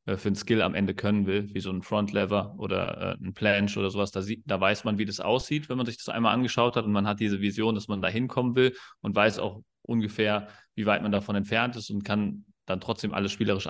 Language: German